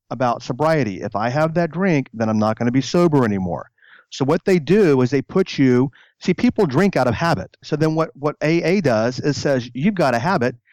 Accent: American